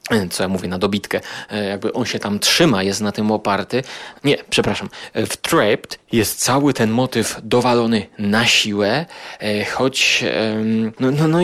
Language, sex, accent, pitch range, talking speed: Polish, male, native, 110-125 Hz, 140 wpm